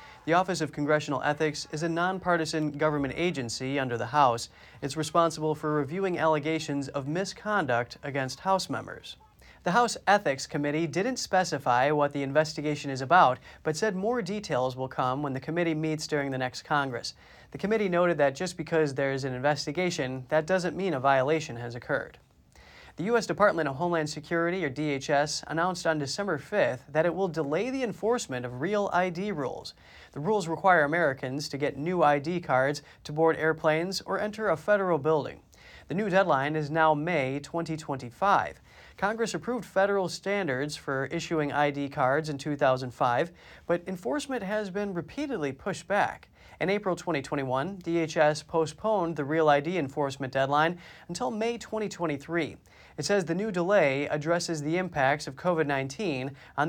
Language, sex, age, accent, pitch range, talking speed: English, male, 30-49, American, 140-180 Hz, 160 wpm